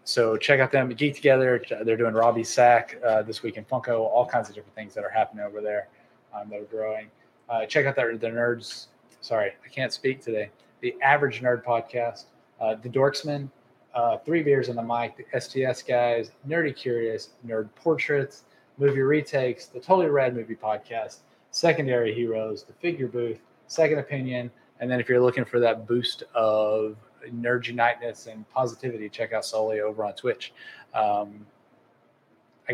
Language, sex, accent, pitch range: English, male, American, 110-140 Hz